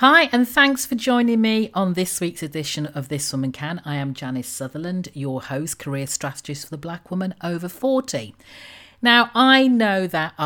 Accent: British